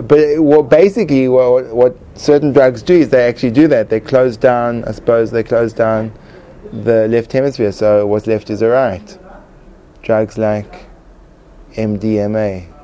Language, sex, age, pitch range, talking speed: English, male, 30-49, 105-140 Hz, 160 wpm